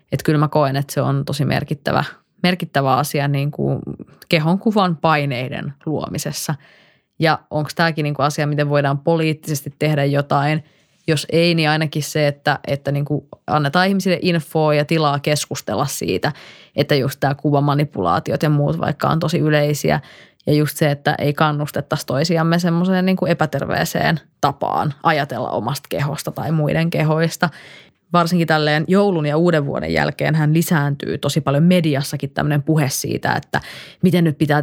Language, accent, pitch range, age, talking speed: Finnish, native, 145-160 Hz, 20-39, 160 wpm